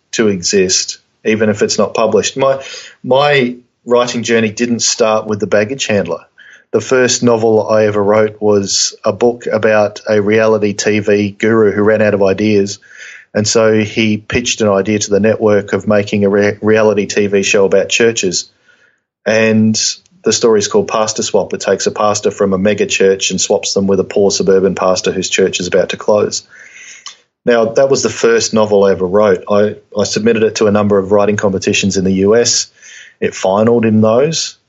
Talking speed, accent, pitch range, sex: 190 wpm, Australian, 100-110 Hz, male